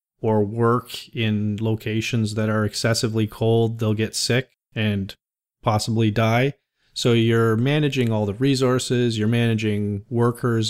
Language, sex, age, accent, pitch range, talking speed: English, male, 40-59, American, 110-130 Hz, 130 wpm